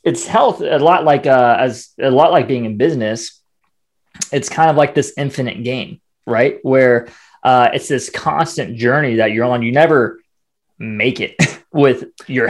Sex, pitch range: male, 120-150 Hz